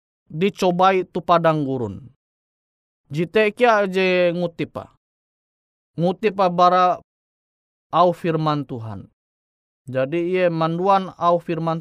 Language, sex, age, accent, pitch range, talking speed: Indonesian, male, 20-39, native, 135-180 Hz, 85 wpm